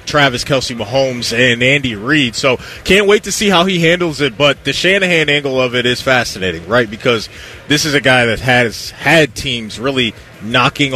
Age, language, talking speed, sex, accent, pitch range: 30-49, English, 190 wpm, male, American, 120-145 Hz